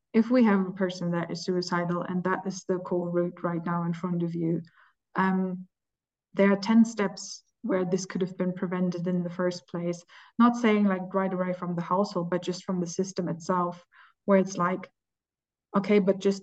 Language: English